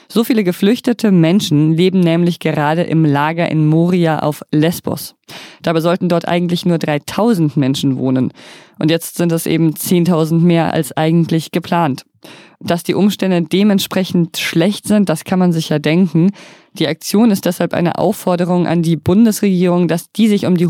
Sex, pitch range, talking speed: female, 160-195 Hz, 165 wpm